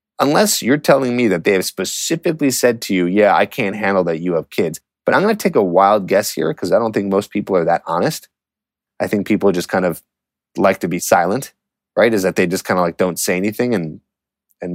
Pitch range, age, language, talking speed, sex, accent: 95-125 Hz, 30-49, English, 235 wpm, male, American